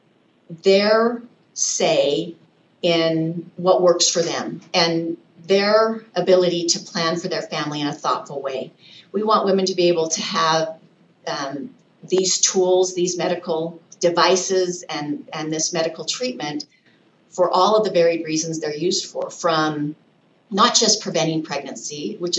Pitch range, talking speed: 160-185 Hz, 140 wpm